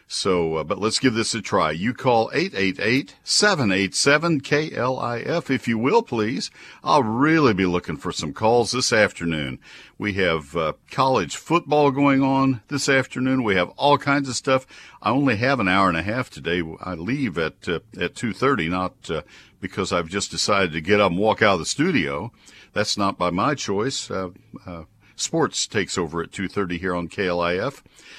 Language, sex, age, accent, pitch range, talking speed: English, male, 50-69, American, 90-125 Hz, 180 wpm